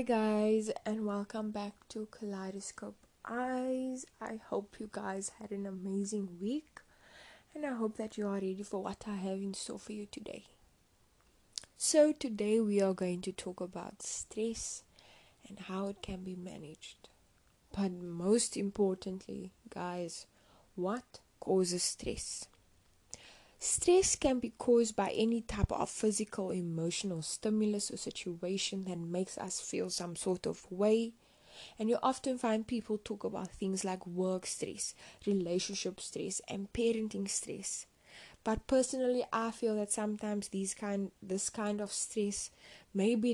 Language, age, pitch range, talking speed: English, 20-39, 190-225 Hz, 145 wpm